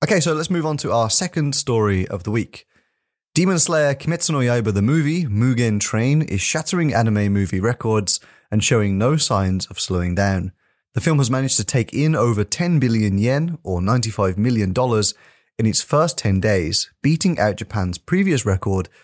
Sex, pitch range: male, 100-145 Hz